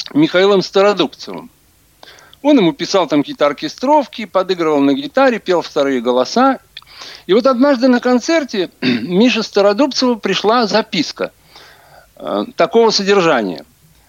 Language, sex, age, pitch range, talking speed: Russian, male, 60-79, 190-245 Hz, 110 wpm